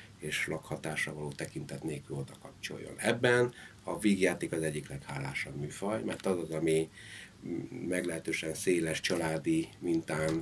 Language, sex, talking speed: Hungarian, male, 125 wpm